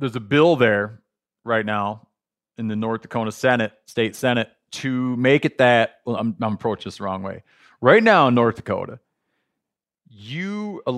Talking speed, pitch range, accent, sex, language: 175 wpm, 105-125 Hz, American, male, English